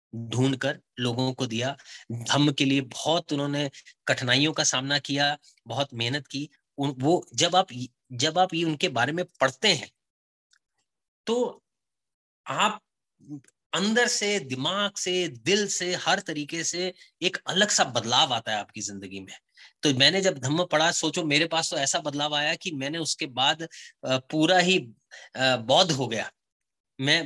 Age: 30-49